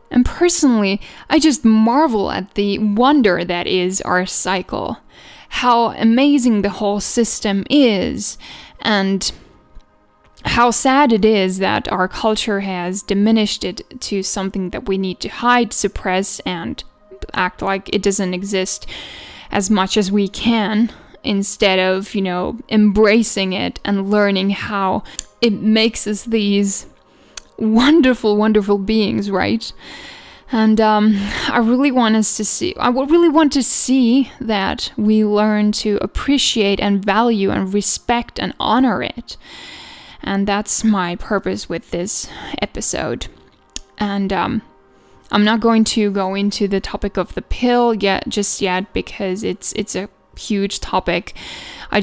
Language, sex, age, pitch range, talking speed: English, female, 10-29, 195-230 Hz, 140 wpm